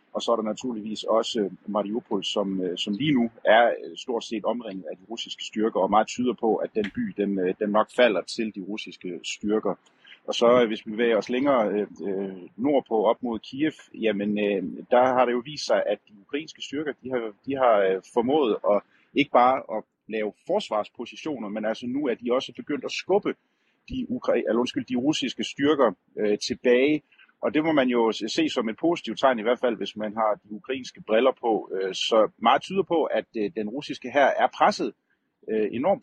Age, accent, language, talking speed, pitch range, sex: 30-49, native, Danish, 190 wpm, 105-140 Hz, male